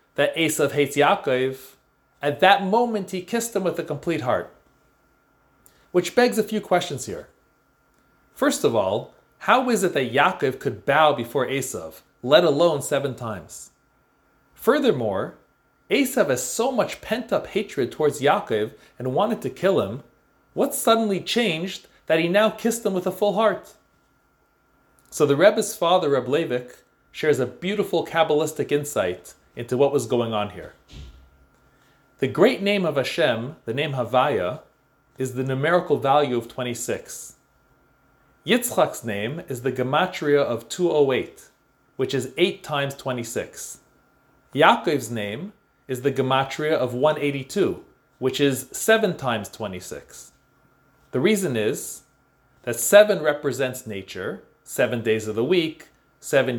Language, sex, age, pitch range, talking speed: English, male, 40-59, 130-180 Hz, 135 wpm